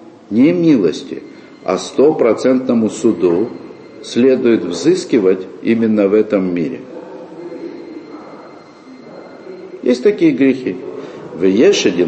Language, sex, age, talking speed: Russian, male, 50-69, 75 wpm